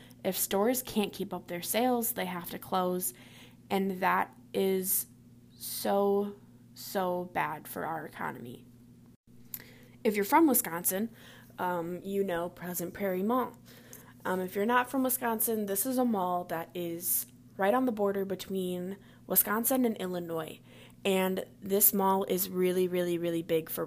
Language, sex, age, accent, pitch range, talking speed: English, female, 20-39, American, 170-215 Hz, 150 wpm